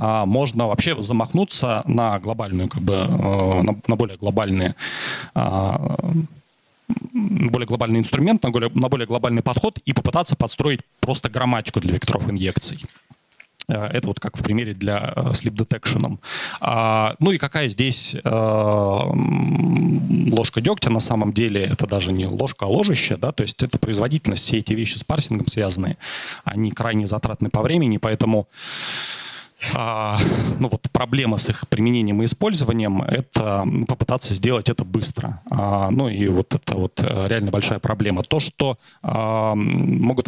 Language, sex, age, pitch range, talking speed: Russian, male, 20-39, 105-135 Hz, 135 wpm